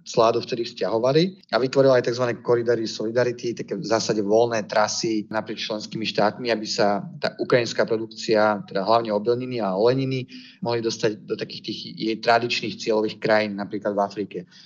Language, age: Slovak, 30-49